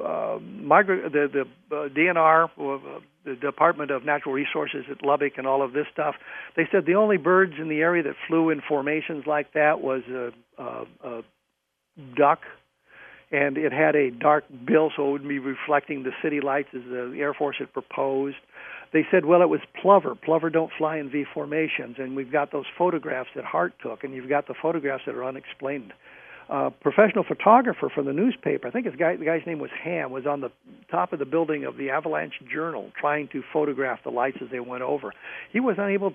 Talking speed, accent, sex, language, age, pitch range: 205 wpm, American, male, English, 60-79, 140-175 Hz